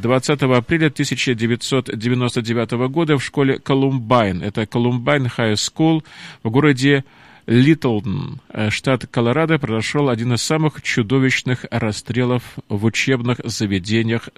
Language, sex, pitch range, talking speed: Russian, male, 120-150 Hz, 105 wpm